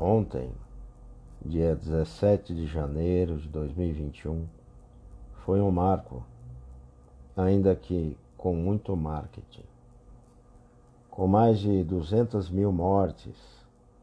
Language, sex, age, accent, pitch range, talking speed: Portuguese, male, 50-69, Brazilian, 85-120 Hz, 90 wpm